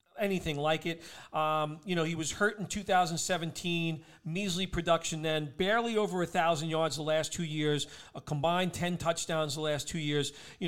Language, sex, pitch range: English, male, 155-190 Hz